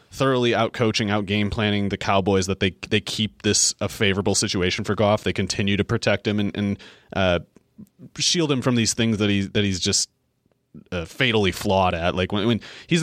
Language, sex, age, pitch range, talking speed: English, male, 30-49, 95-115 Hz, 205 wpm